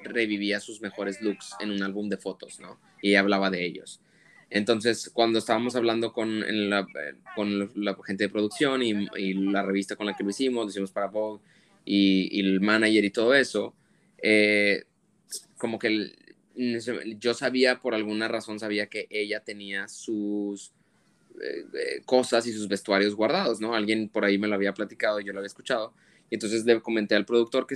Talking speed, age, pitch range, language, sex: 185 wpm, 20-39, 100-115 Hz, Spanish, male